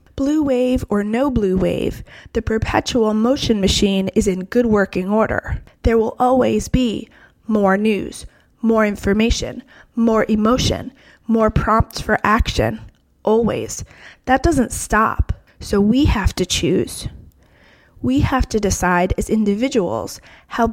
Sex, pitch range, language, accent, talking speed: female, 205-245 Hz, English, American, 130 wpm